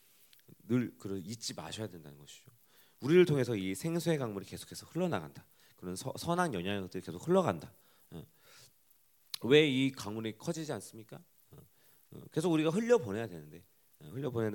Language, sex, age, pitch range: Korean, male, 40-59, 90-135 Hz